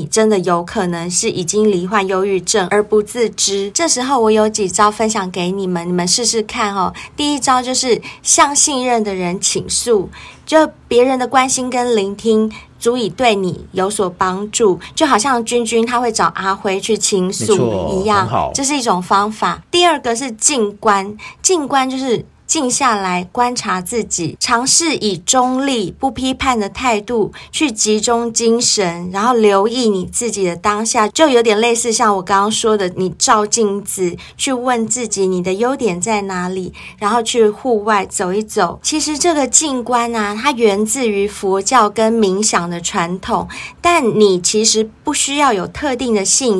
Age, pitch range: 20-39, 200-245 Hz